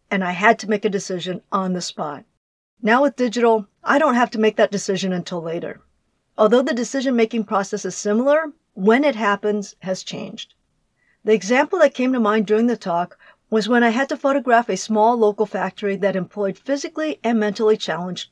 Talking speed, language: 190 wpm, English